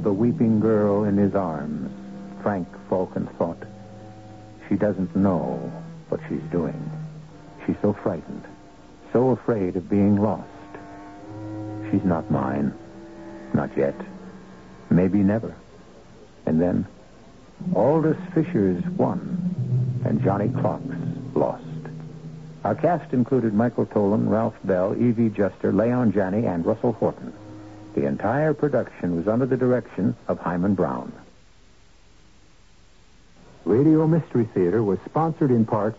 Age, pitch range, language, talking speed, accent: 70-89, 95-130 Hz, English, 115 wpm, American